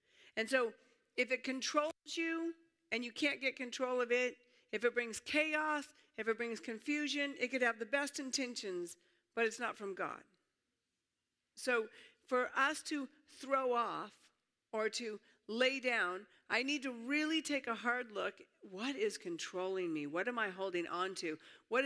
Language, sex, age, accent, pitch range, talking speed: English, female, 50-69, American, 220-295 Hz, 165 wpm